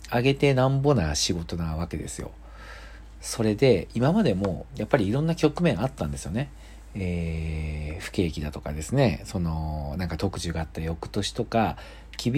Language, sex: Japanese, male